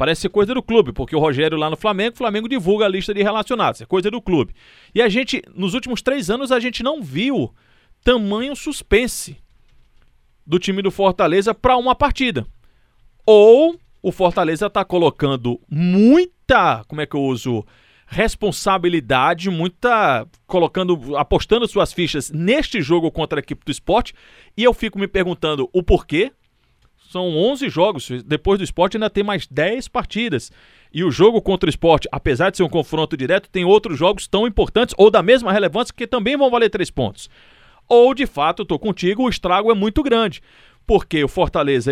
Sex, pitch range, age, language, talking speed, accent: male, 165-225 Hz, 40-59, Portuguese, 180 wpm, Brazilian